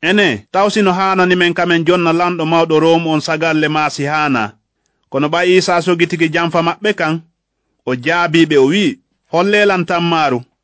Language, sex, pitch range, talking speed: English, male, 160-185 Hz, 145 wpm